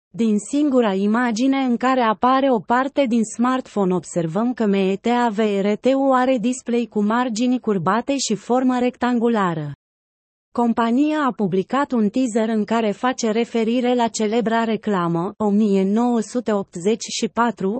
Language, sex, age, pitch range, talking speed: Romanian, female, 30-49, 210-250 Hz, 115 wpm